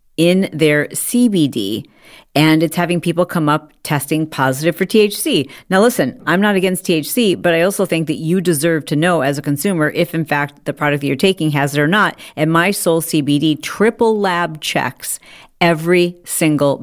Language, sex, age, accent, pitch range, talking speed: English, female, 40-59, American, 150-190 Hz, 185 wpm